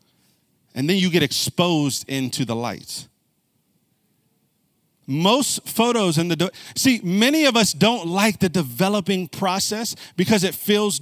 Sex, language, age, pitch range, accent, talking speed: male, English, 40-59, 165-245 Hz, American, 130 wpm